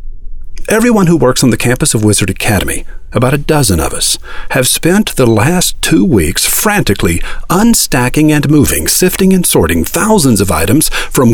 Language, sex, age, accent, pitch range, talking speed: English, male, 50-69, American, 90-150 Hz, 165 wpm